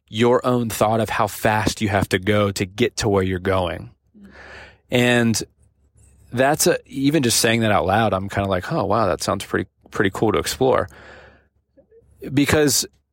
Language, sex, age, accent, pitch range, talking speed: English, male, 20-39, American, 100-115 Hz, 180 wpm